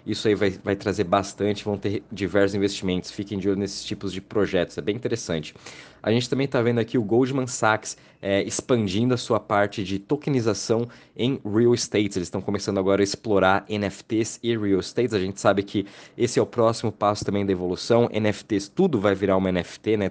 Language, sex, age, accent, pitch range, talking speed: Portuguese, male, 20-39, Brazilian, 95-110 Hz, 200 wpm